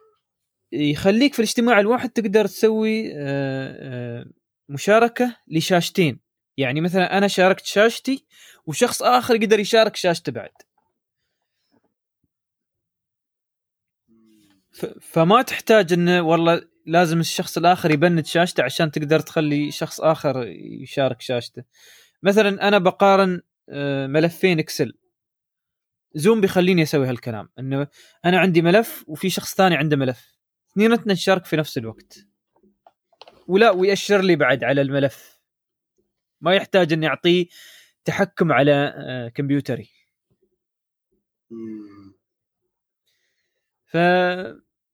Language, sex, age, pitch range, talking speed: Arabic, male, 20-39, 145-200 Hz, 95 wpm